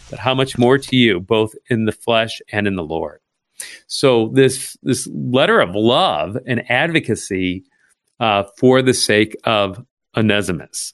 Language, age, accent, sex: English, 40-59, American, male